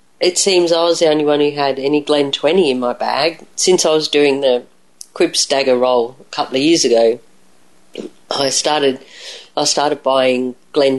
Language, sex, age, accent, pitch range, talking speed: English, female, 40-59, Australian, 130-175 Hz, 185 wpm